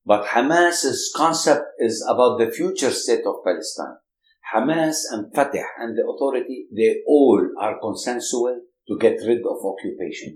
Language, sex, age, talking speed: English, male, 60-79, 145 wpm